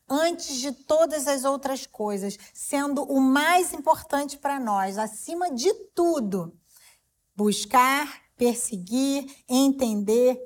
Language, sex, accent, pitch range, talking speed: English, female, Brazilian, 205-260 Hz, 105 wpm